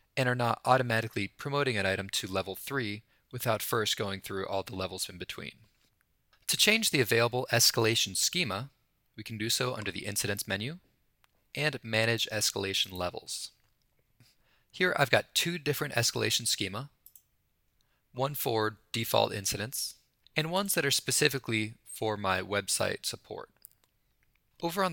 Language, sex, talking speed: English, male, 140 wpm